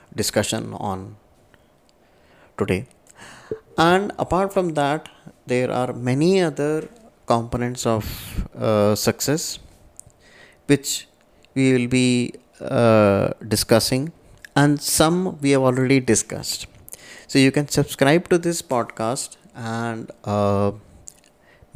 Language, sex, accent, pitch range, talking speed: English, male, Indian, 115-165 Hz, 100 wpm